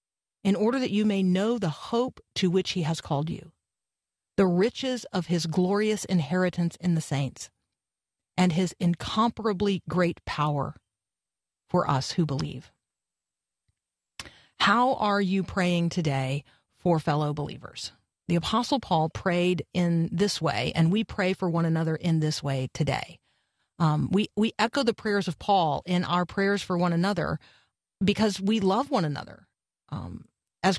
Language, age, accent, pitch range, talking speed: English, 40-59, American, 165-215 Hz, 150 wpm